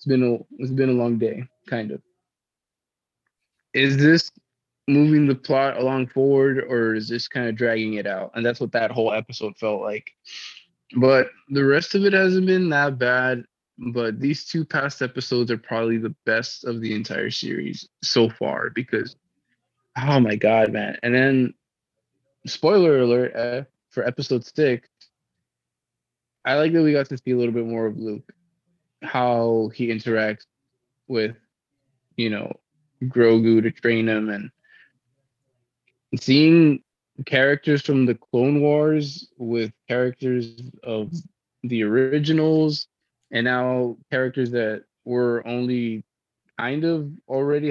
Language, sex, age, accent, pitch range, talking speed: English, male, 20-39, American, 115-140 Hz, 140 wpm